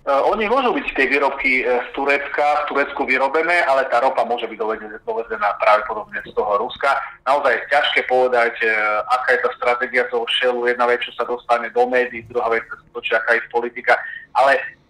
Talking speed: 185 wpm